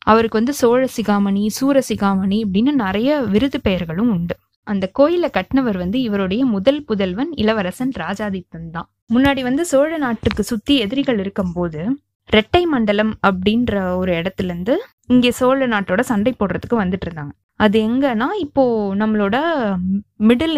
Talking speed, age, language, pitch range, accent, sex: 130 wpm, 20-39, Tamil, 195-255 Hz, native, female